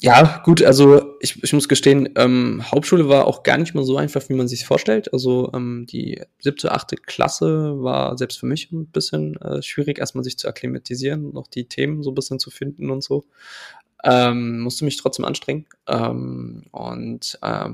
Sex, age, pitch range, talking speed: male, 20-39, 115-140 Hz, 185 wpm